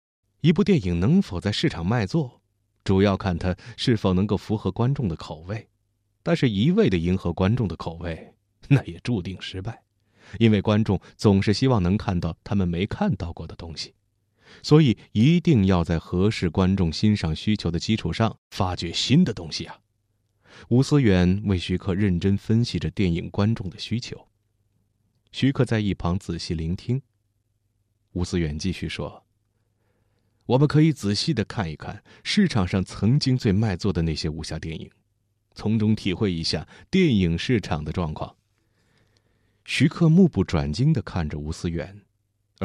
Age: 30-49